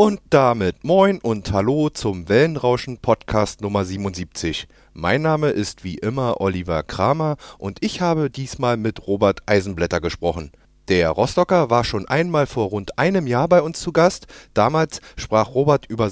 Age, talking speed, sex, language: 30-49, 155 wpm, male, German